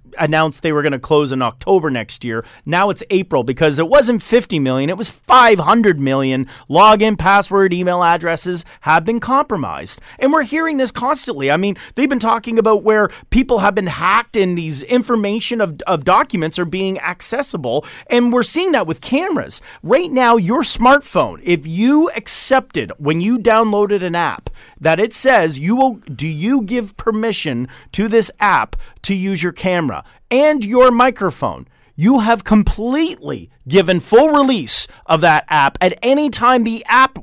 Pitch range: 175-245 Hz